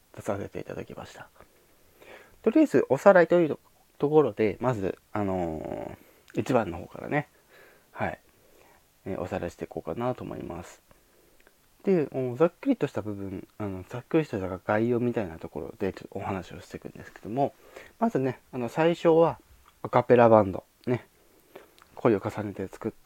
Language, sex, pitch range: Japanese, male, 105-165 Hz